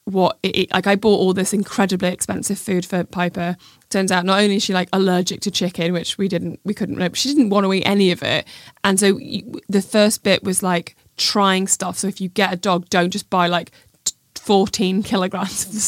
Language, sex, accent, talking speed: English, female, British, 225 wpm